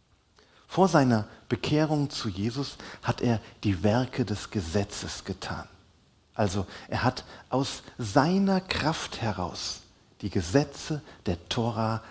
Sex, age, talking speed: male, 50-69, 115 wpm